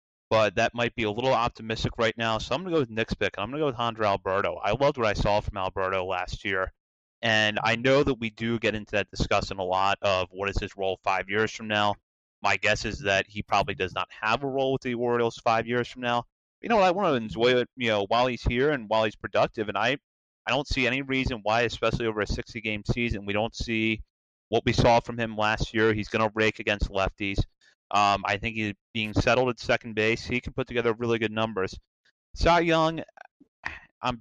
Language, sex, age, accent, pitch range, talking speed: English, male, 30-49, American, 100-120 Hz, 240 wpm